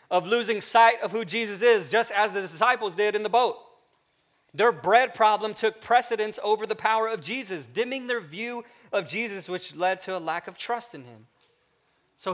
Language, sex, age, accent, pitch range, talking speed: English, male, 30-49, American, 160-220 Hz, 195 wpm